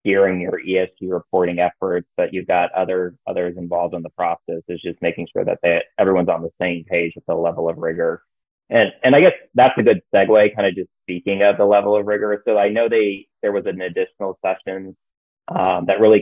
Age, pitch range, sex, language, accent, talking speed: 20-39, 90-100 Hz, male, English, American, 220 wpm